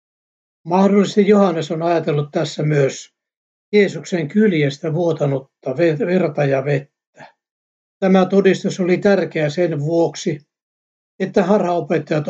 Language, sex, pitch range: Finnish, male, 145-185 Hz